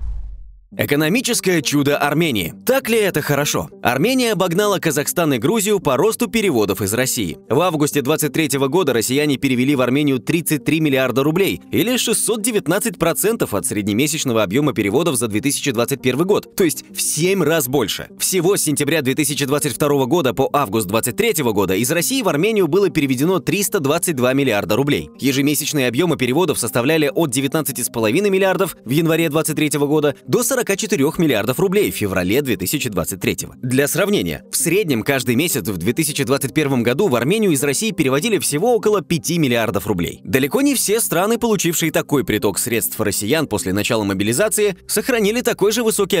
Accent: native